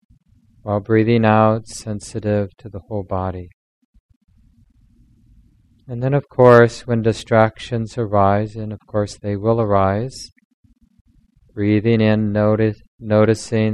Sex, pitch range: male, 100-115 Hz